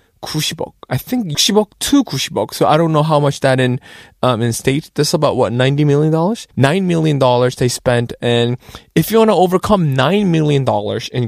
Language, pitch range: Korean, 130-180 Hz